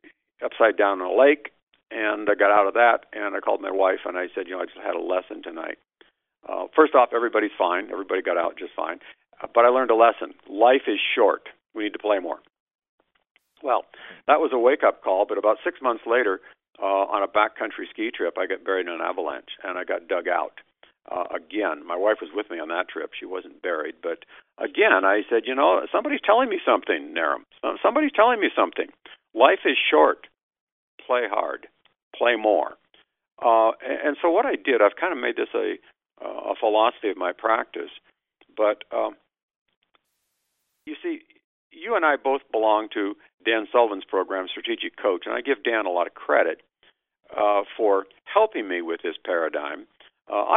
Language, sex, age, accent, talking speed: English, male, 50-69, American, 195 wpm